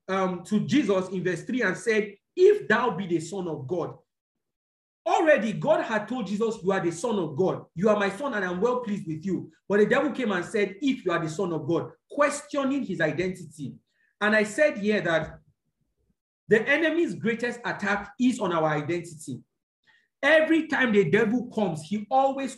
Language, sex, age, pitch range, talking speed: English, male, 40-59, 180-245 Hz, 190 wpm